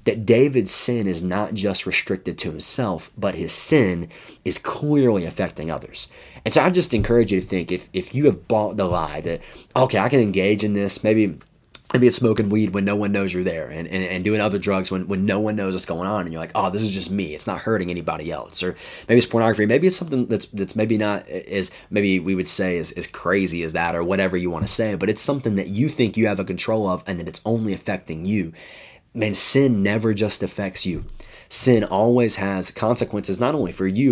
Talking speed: 235 wpm